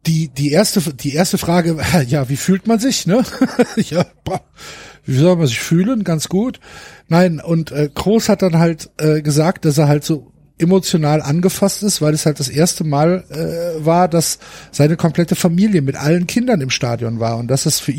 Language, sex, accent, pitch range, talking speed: German, male, German, 150-180 Hz, 195 wpm